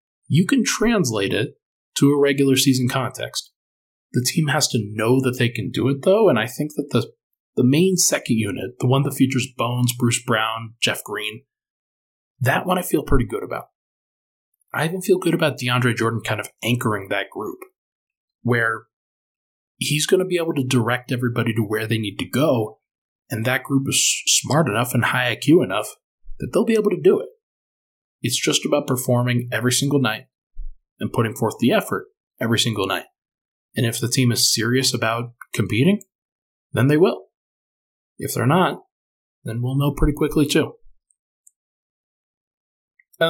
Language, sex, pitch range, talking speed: English, male, 115-145 Hz, 175 wpm